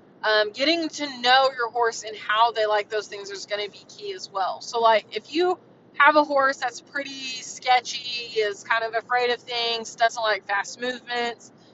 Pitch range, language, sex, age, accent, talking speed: 215-250 Hz, English, female, 20-39, American, 200 wpm